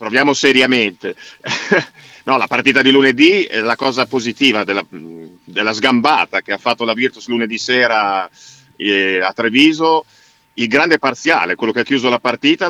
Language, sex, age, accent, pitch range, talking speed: Italian, male, 50-69, native, 110-130 Hz, 150 wpm